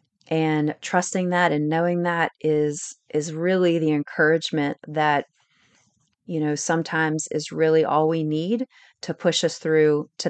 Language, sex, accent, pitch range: English, female, American, 155-200 Hz